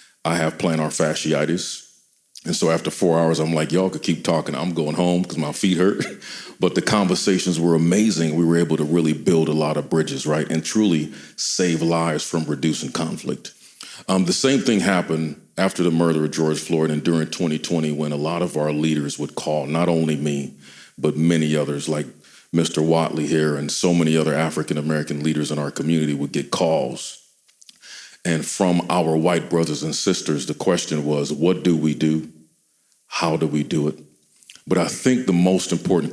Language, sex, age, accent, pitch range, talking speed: English, male, 40-59, American, 75-85 Hz, 190 wpm